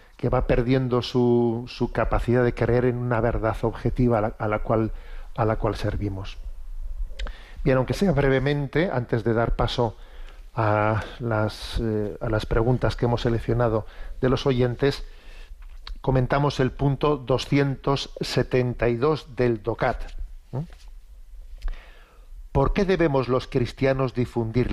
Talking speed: 115 wpm